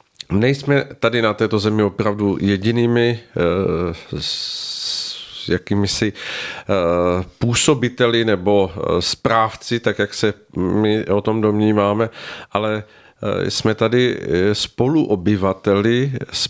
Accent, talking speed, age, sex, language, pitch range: native, 85 wpm, 50-69, male, Czech, 100-115 Hz